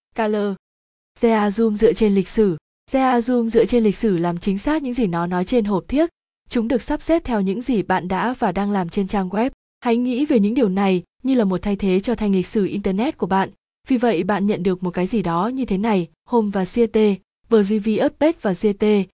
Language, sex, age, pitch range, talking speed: Vietnamese, female, 20-39, 190-235 Hz, 225 wpm